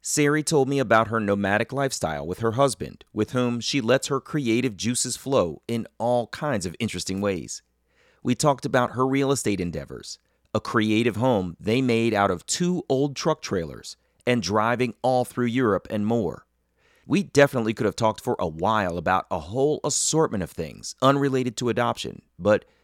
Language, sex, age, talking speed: English, male, 40-59, 175 wpm